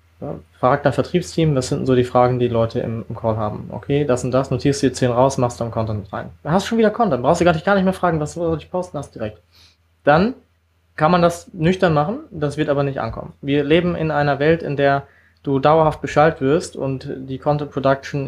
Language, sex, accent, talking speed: German, male, German, 225 wpm